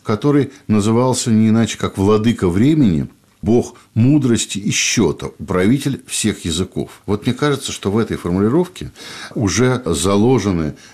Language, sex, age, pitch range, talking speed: Russian, male, 50-69, 90-125 Hz, 125 wpm